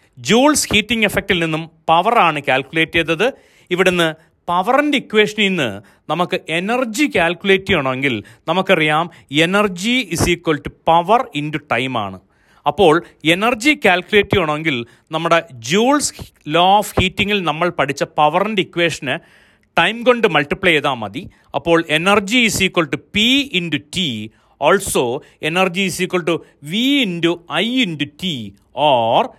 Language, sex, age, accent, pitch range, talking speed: Malayalam, male, 40-59, native, 150-195 Hz, 130 wpm